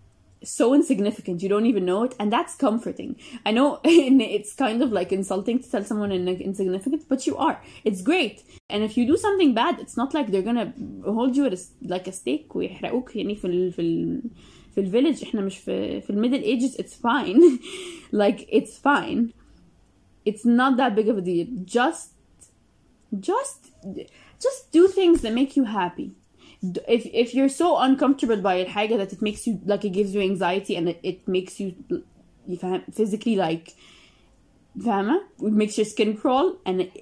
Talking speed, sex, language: 165 wpm, female, Arabic